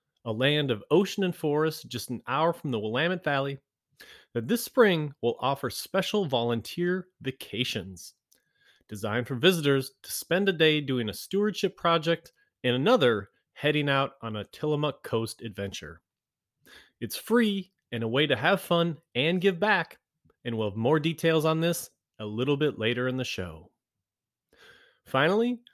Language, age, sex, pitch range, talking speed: English, 30-49, male, 120-175 Hz, 155 wpm